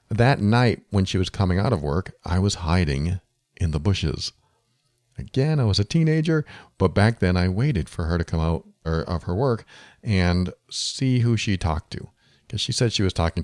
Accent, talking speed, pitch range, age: American, 205 wpm, 80-110 Hz, 40-59